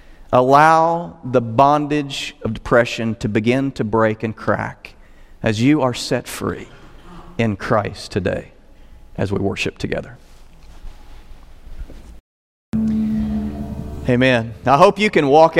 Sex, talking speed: male, 110 wpm